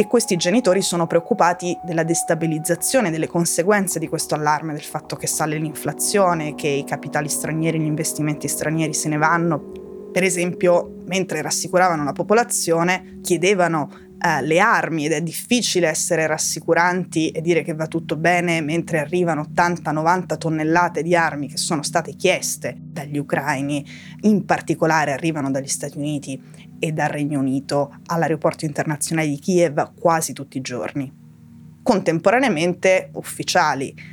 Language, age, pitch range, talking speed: Italian, 20-39, 150-185 Hz, 140 wpm